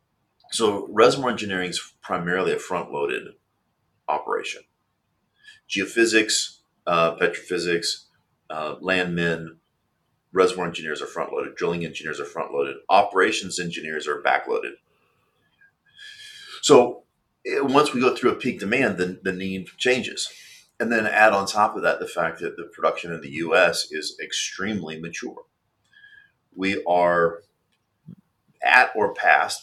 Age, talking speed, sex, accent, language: 40-59, 120 wpm, male, American, English